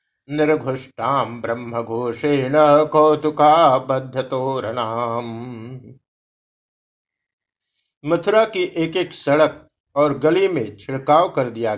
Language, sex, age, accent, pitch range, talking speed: Hindi, male, 50-69, native, 130-170 Hz, 70 wpm